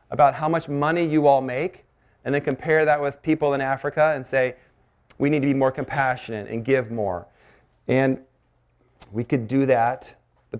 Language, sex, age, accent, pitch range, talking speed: English, male, 30-49, American, 120-145 Hz, 180 wpm